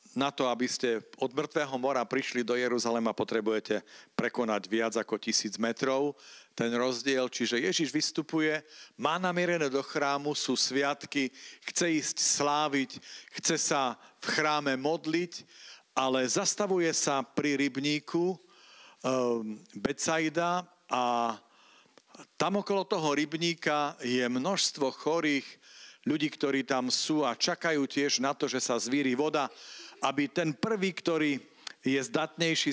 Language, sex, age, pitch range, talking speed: Slovak, male, 50-69, 120-155 Hz, 125 wpm